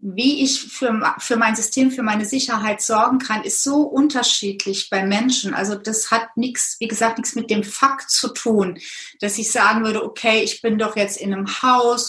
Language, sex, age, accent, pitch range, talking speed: German, female, 30-49, German, 210-250 Hz, 200 wpm